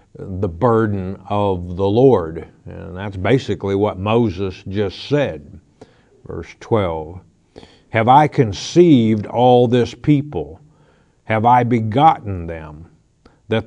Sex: male